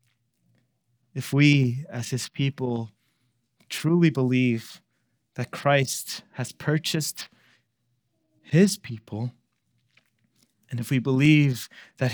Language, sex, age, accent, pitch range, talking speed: English, male, 20-39, American, 125-155 Hz, 90 wpm